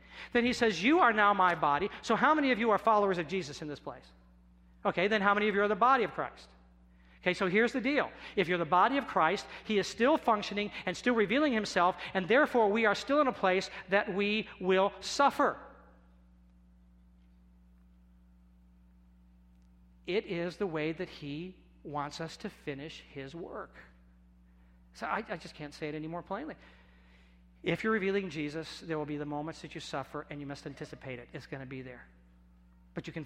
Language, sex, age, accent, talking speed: English, male, 50-69, American, 195 wpm